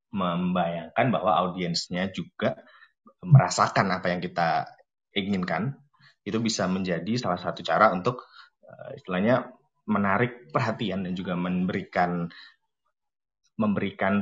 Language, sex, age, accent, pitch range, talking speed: Indonesian, male, 20-39, native, 90-125 Hz, 95 wpm